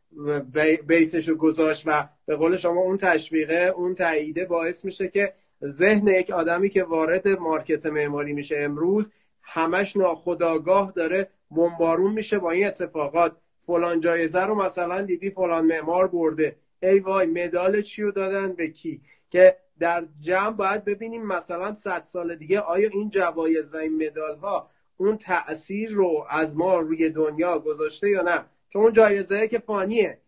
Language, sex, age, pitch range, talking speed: Persian, male, 30-49, 155-185 Hz, 150 wpm